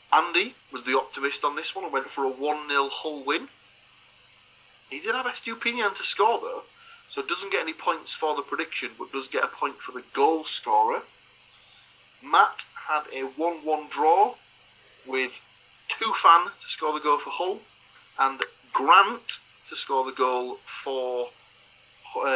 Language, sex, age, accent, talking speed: English, male, 30-49, British, 160 wpm